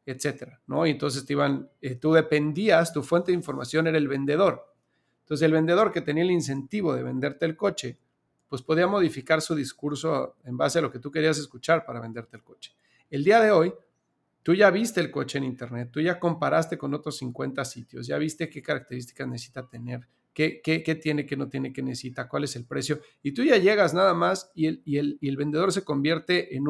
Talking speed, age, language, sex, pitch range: 215 wpm, 40-59, Spanish, male, 130-165 Hz